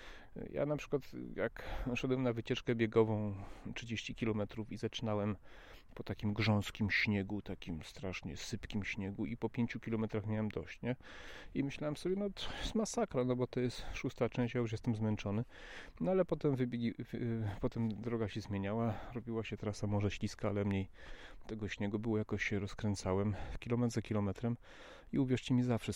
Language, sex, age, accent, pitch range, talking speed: Polish, male, 40-59, native, 105-125 Hz, 165 wpm